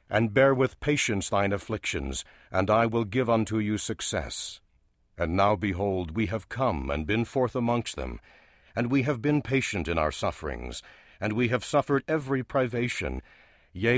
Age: 60-79